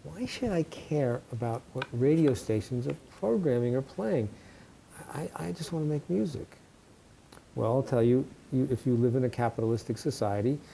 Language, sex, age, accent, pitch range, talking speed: English, male, 50-69, American, 110-130 Hz, 175 wpm